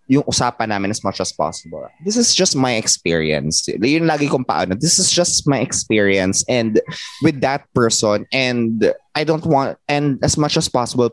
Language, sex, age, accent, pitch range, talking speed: English, male, 20-39, Filipino, 105-135 Hz, 145 wpm